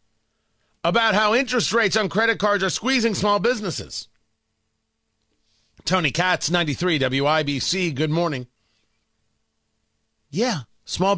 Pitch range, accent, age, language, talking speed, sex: 130-195 Hz, American, 30-49, English, 100 wpm, male